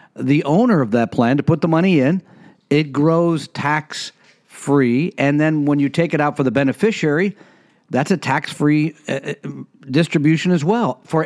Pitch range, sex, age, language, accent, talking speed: 145-190 Hz, male, 50-69, English, American, 165 wpm